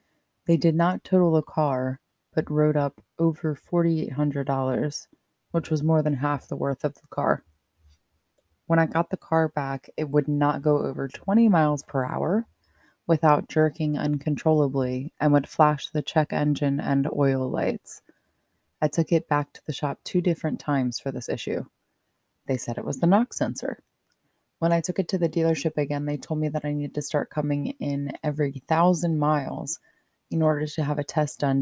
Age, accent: 20-39, American